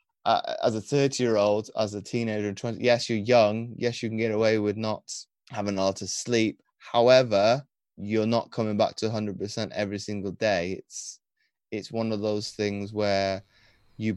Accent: British